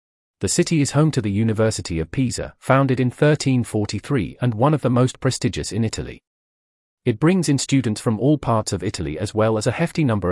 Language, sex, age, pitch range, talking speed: English, male, 40-59, 95-130 Hz, 205 wpm